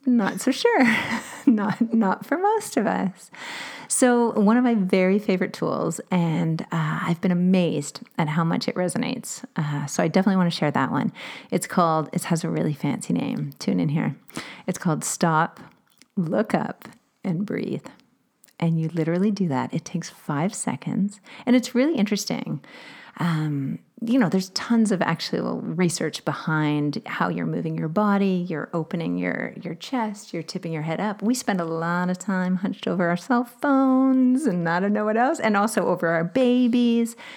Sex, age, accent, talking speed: female, 40-59, American, 180 wpm